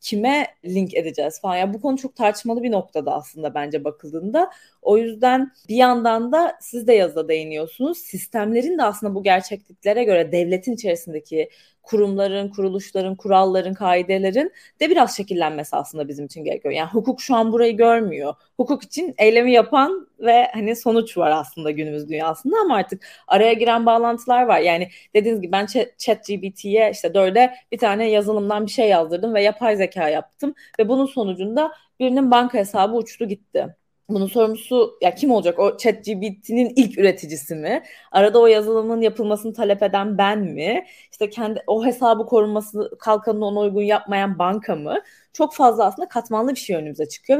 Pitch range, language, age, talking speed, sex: 190-245 Hz, Turkish, 30-49, 160 wpm, female